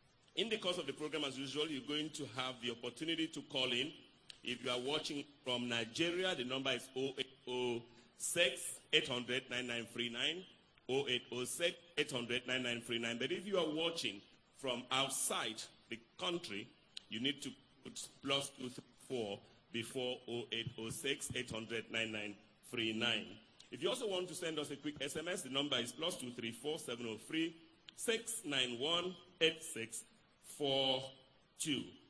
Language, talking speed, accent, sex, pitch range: English, 115 wpm, Nigerian, male, 120-155 Hz